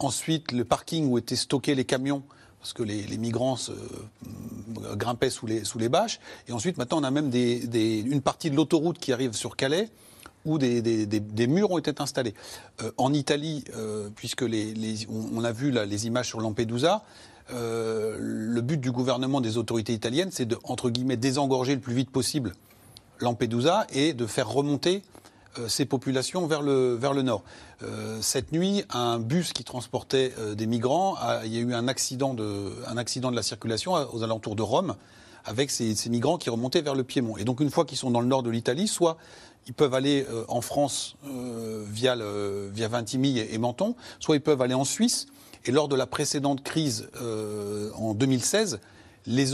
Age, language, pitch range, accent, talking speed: 40-59, French, 115-140 Hz, French, 205 wpm